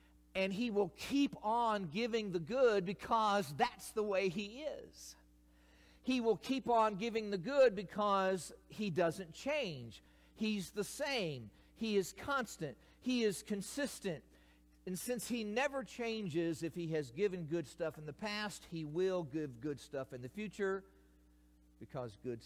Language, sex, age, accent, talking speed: English, male, 50-69, American, 155 wpm